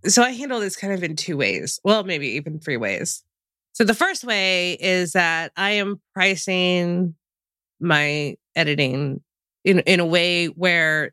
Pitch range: 145-180 Hz